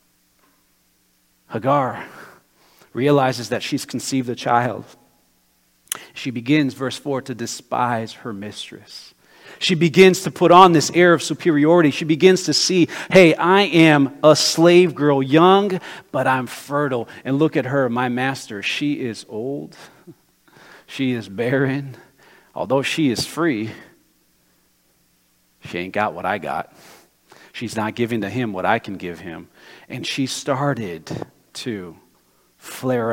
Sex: male